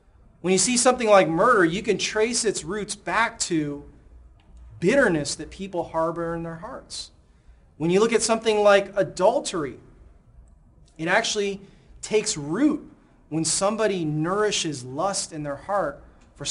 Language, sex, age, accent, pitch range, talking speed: English, male, 30-49, American, 150-210 Hz, 140 wpm